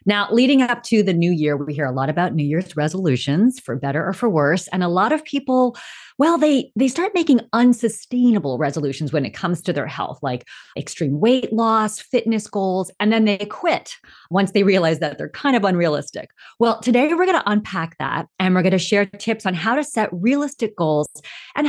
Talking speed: 210 wpm